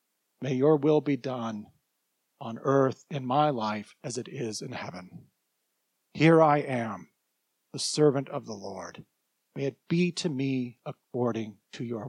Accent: American